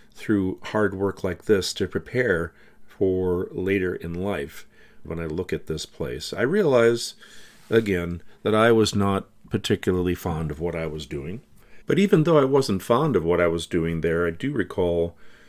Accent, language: American, English